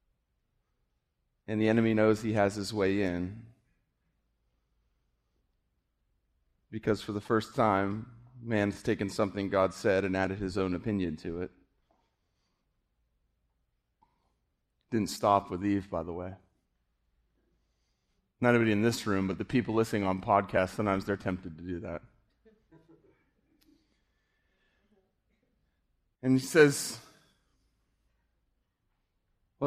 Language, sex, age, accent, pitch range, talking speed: English, male, 30-49, American, 95-135 Hz, 110 wpm